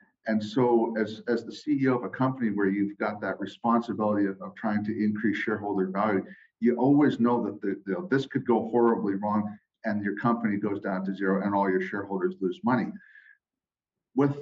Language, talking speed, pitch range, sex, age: English, 190 wpm, 100-120 Hz, male, 40-59